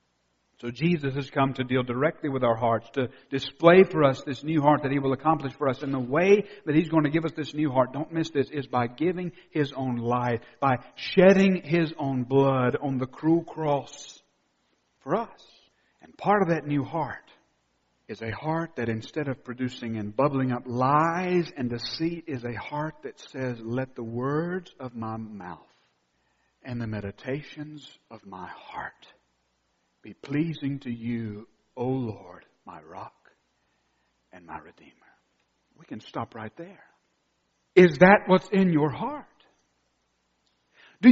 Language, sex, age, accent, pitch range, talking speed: English, male, 50-69, American, 125-180 Hz, 165 wpm